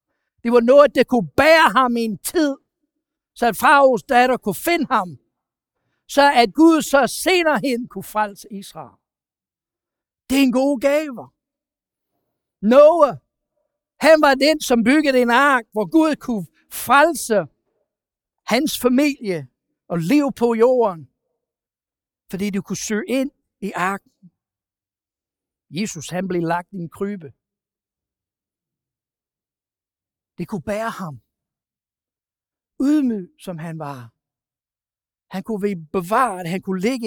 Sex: male